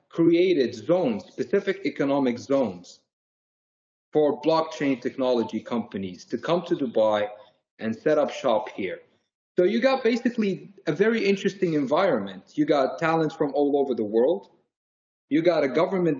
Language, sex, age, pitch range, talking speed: English, male, 40-59, 125-170 Hz, 140 wpm